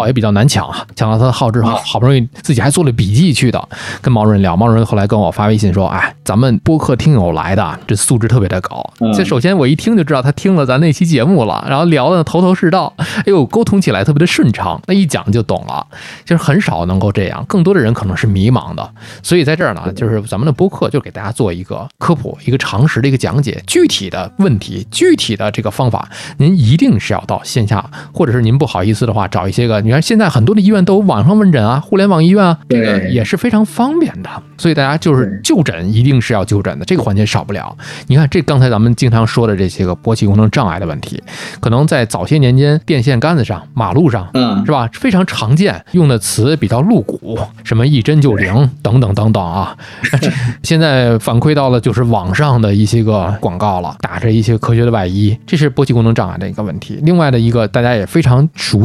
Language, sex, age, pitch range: Chinese, male, 20-39, 105-155 Hz